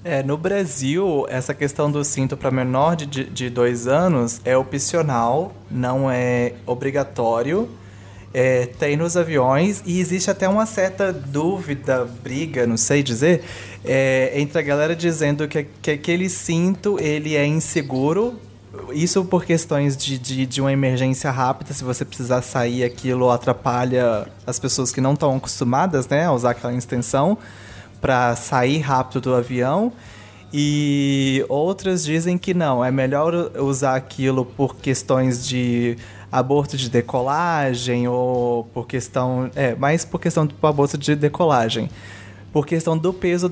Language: Portuguese